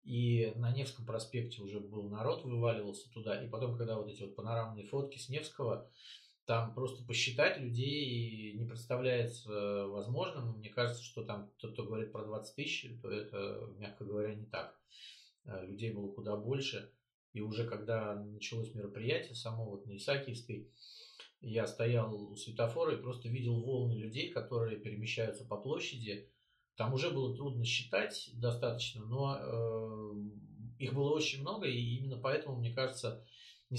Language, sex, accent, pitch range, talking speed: Russian, male, native, 110-130 Hz, 150 wpm